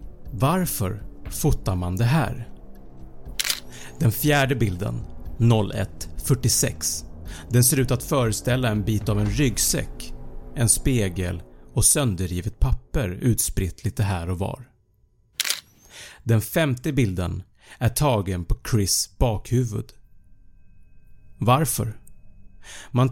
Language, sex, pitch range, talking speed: Swedish, male, 95-125 Hz, 100 wpm